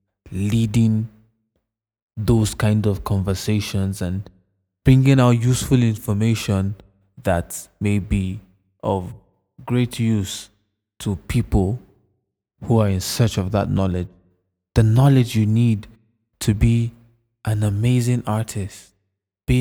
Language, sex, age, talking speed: English, male, 20-39, 105 wpm